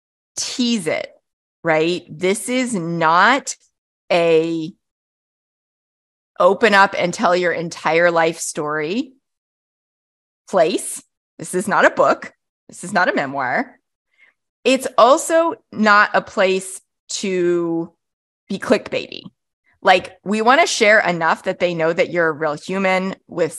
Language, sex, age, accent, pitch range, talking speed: English, female, 20-39, American, 170-225 Hz, 125 wpm